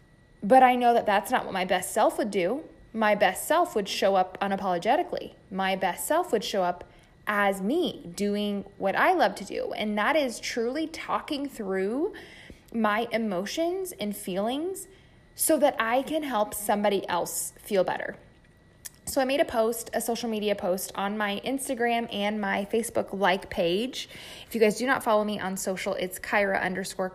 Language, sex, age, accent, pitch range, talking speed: English, female, 20-39, American, 195-250 Hz, 180 wpm